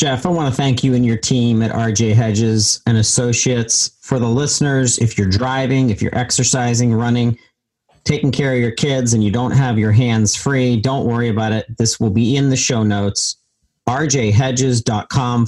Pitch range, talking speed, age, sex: 110-130 Hz, 185 wpm, 40-59, male